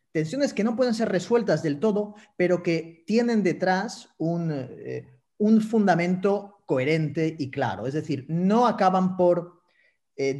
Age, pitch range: 30-49, 135-190 Hz